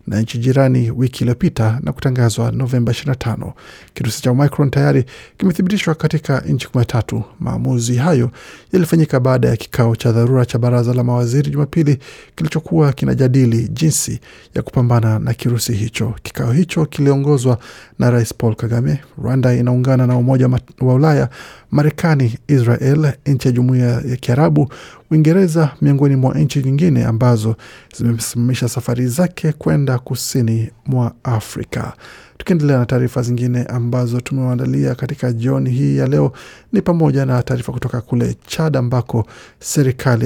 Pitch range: 120-145 Hz